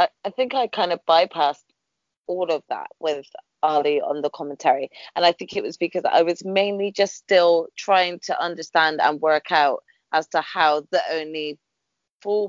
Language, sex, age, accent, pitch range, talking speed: English, female, 20-39, British, 165-215 Hz, 180 wpm